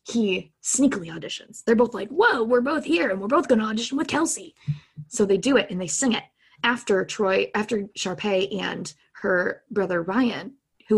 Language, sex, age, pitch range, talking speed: English, female, 20-39, 175-245 Hz, 185 wpm